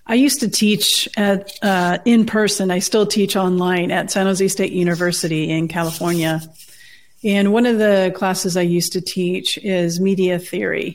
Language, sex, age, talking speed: English, female, 40-59, 170 wpm